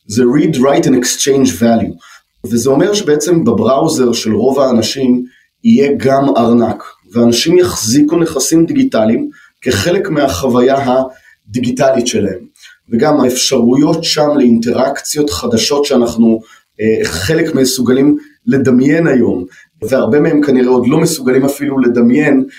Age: 30-49